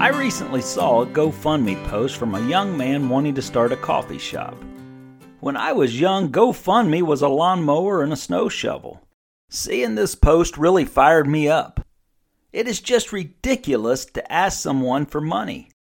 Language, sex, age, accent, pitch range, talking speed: English, male, 40-59, American, 145-210 Hz, 165 wpm